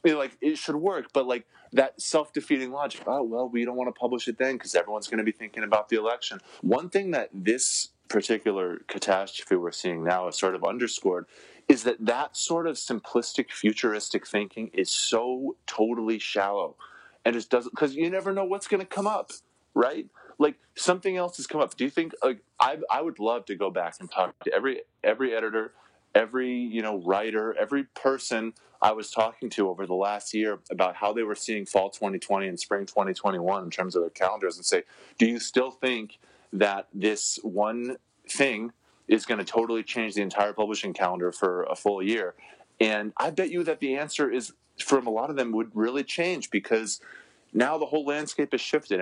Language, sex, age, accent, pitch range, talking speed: English, male, 30-49, American, 105-140 Hz, 200 wpm